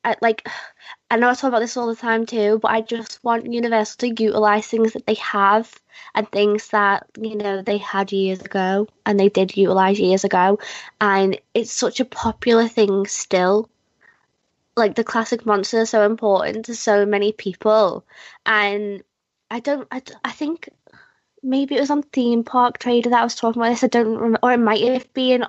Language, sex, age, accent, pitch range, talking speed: English, female, 20-39, British, 195-230 Hz, 195 wpm